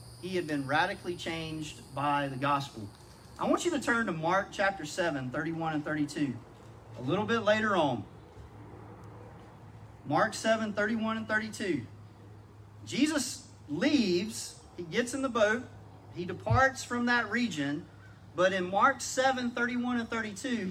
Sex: male